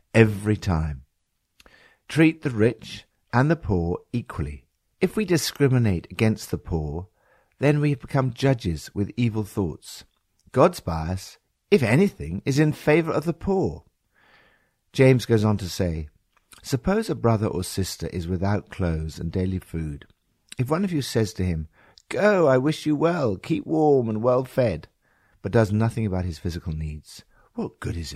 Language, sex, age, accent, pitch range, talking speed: English, male, 60-79, British, 90-130 Hz, 160 wpm